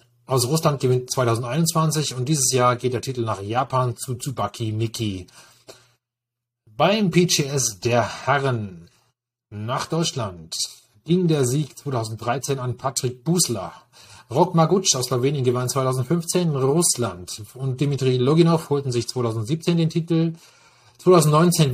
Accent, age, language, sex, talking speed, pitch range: German, 30-49, German, male, 120 wpm, 120-145 Hz